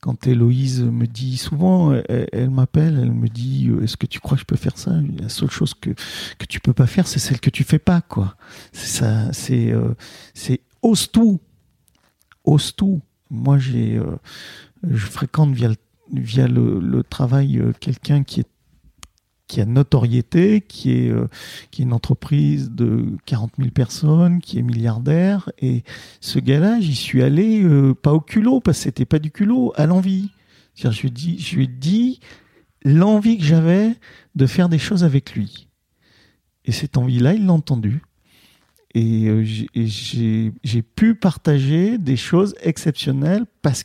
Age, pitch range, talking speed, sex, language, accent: 40-59, 120-155 Hz, 165 wpm, male, French, French